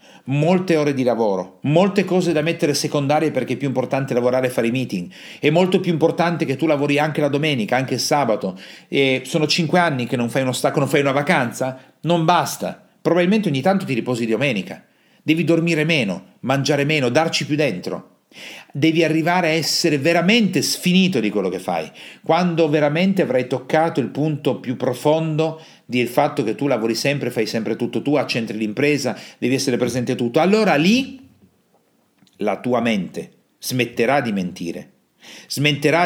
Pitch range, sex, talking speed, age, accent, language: 120-160 Hz, male, 175 wpm, 40-59, native, Italian